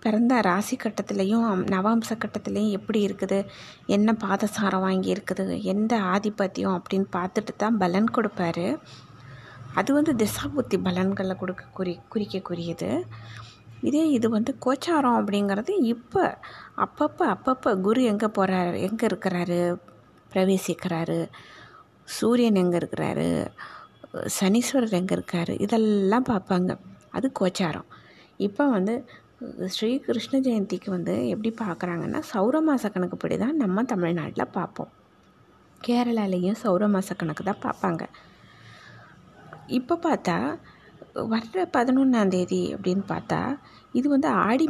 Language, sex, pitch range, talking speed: Tamil, female, 185-245 Hz, 105 wpm